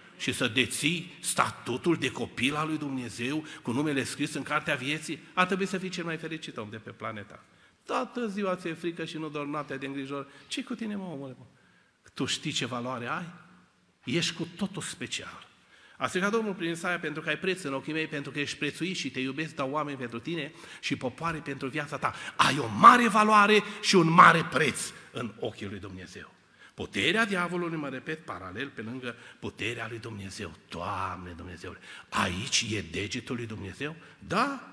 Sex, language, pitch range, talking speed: male, Romanian, 130-185 Hz, 185 wpm